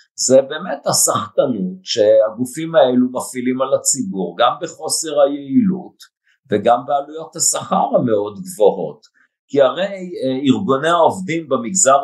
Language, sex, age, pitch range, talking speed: Hebrew, male, 50-69, 135-190 Hz, 105 wpm